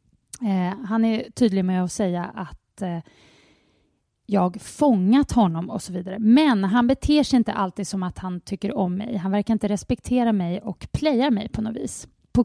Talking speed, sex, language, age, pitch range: 190 wpm, female, English, 30-49, 195-235 Hz